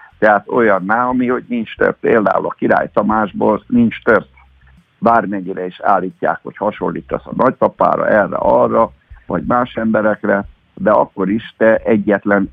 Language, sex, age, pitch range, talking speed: Hungarian, male, 50-69, 95-115 Hz, 135 wpm